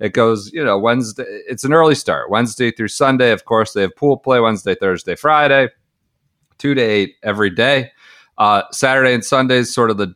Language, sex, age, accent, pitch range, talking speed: English, male, 40-59, American, 110-140 Hz, 200 wpm